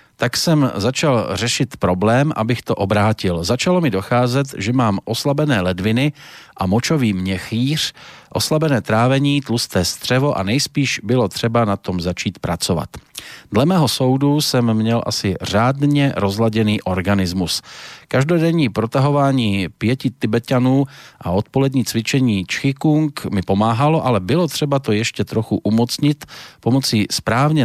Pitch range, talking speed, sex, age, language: 100-140 Hz, 125 wpm, male, 40-59, Slovak